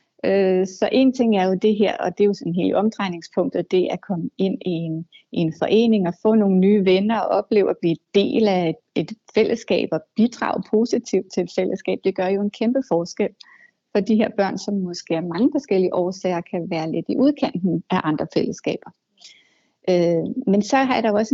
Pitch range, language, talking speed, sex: 185-230 Hz, Danish, 210 wpm, female